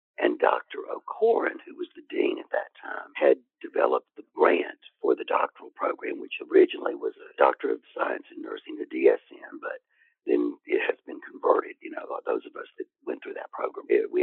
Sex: male